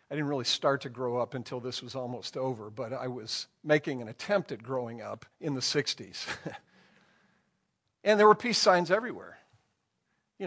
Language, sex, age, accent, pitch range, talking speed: English, male, 50-69, American, 140-190 Hz, 180 wpm